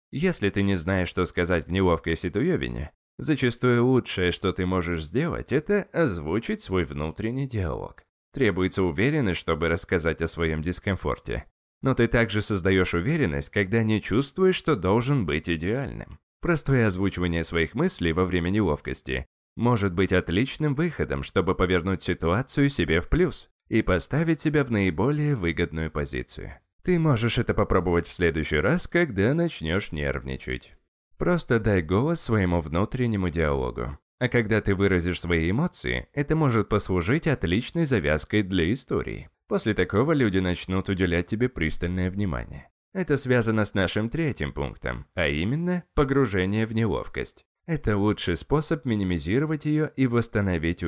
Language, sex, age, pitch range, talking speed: Russian, male, 20-39, 85-125 Hz, 140 wpm